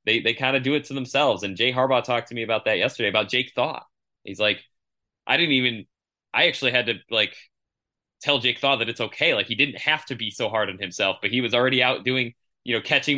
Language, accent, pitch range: English, American, 110-130 Hz